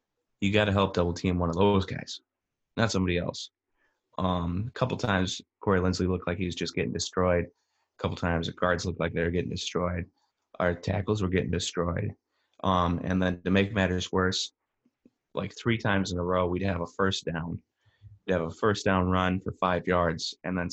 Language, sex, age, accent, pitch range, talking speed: English, male, 20-39, American, 90-100 Hz, 205 wpm